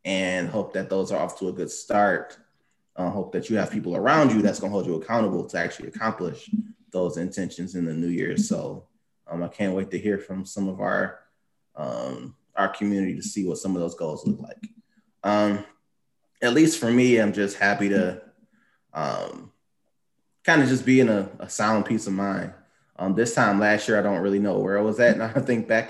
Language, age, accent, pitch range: English, 20-39, American, 95-120 Hz